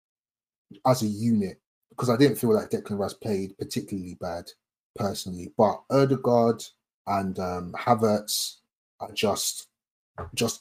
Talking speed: 125 wpm